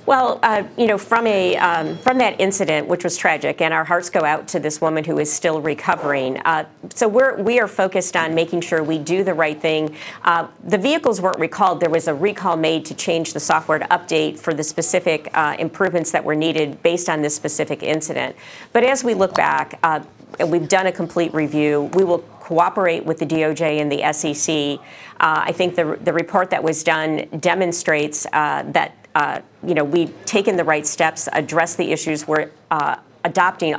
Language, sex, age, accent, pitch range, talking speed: English, female, 50-69, American, 155-185 Hz, 205 wpm